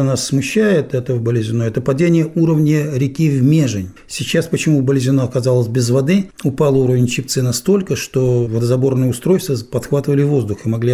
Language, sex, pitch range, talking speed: Russian, male, 125-160 Hz, 155 wpm